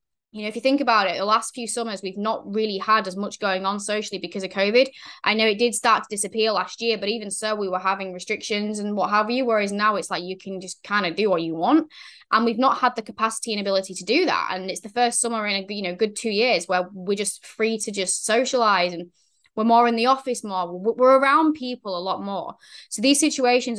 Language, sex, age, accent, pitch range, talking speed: English, female, 10-29, British, 200-245 Hz, 255 wpm